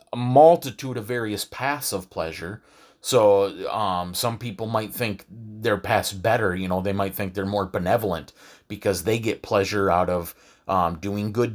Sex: male